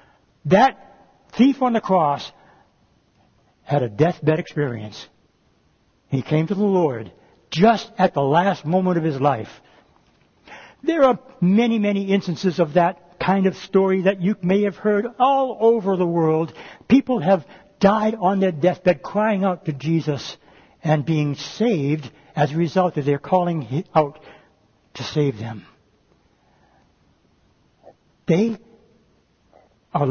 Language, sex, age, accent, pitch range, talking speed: English, male, 60-79, American, 150-215 Hz, 130 wpm